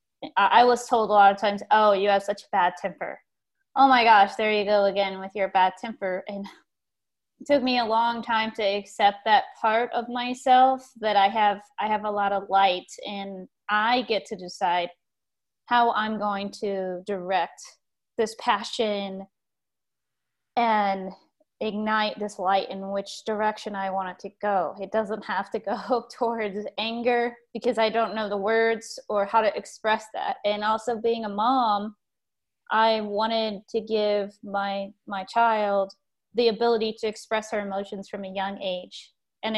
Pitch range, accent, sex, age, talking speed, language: 200-235 Hz, American, female, 20-39, 170 wpm, English